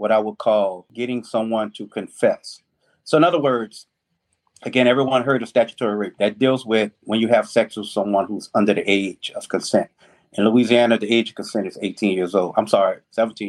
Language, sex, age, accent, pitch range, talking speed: English, male, 30-49, American, 110-130 Hz, 205 wpm